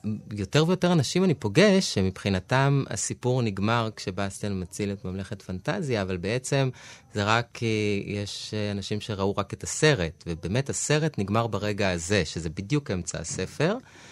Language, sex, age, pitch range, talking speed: Hebrew, male, 30-49, 100-130 Hz, 140 wpm